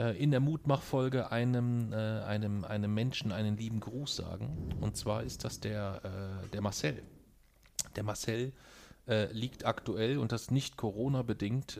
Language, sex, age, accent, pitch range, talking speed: German, male, 40-59, German, 105-130 Hz, 155 wpm